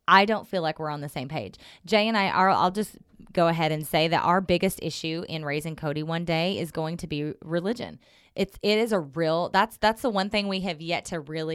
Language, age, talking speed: English, 20-39, 250 wpm